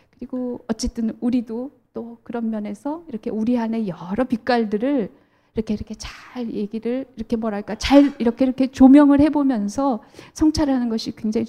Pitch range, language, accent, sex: 205-250 Hz, Korean, native, female